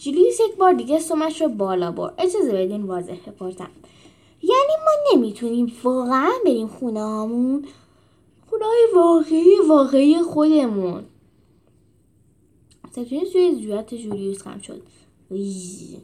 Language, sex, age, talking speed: Persian, female, 10-29, 105 wpm